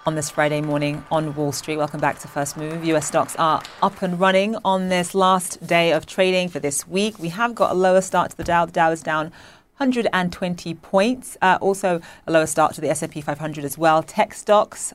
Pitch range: 150-185 Hz